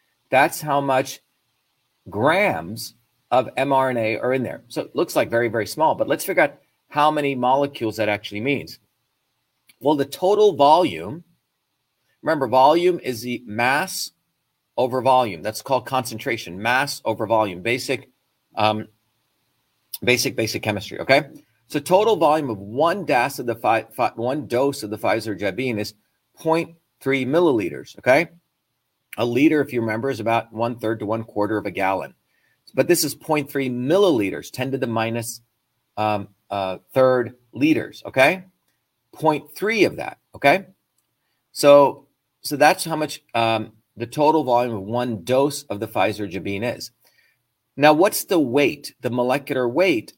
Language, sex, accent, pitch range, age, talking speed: English, male, American, 110-140 Hz, 40-59, 145 wpm